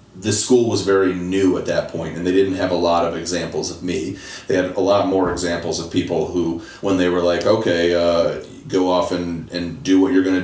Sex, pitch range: male, 85-95 Hz